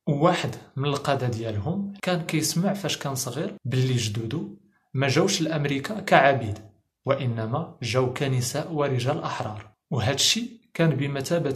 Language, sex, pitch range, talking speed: English, male, 125-155 Hz, 125 wpm